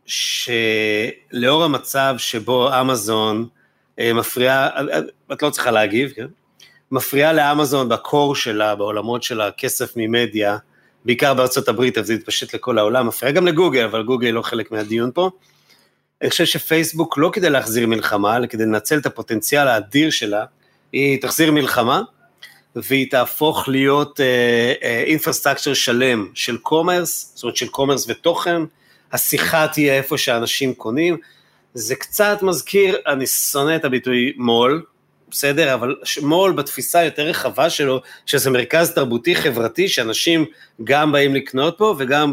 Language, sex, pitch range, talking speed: Hebrew, male, 120-155 Hz, 135 wpm